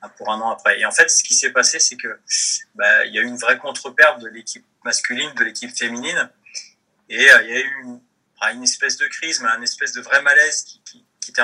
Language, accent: French, French